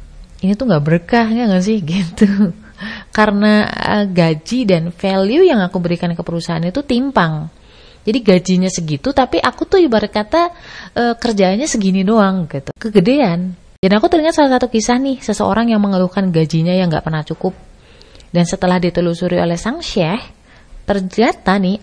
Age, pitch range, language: 30-49, 165-220 Hz, Indonesian